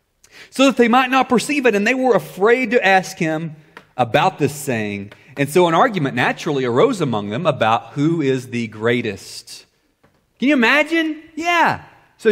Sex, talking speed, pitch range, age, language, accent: male, 170 wpm, 140-215 Hz, 30-49, English, American